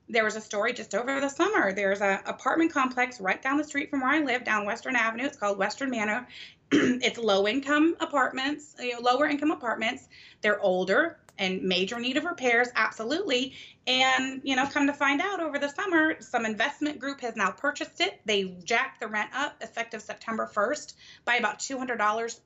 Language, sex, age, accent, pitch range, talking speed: English, female, 30-49, American, 210-280 Hz, 185 wpm